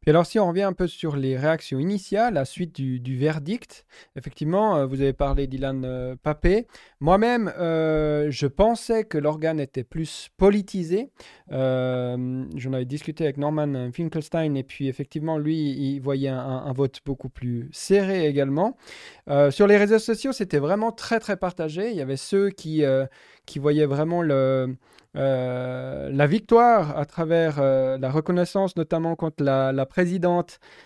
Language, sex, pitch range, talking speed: French, male, 135-185 Hz, 165 wpm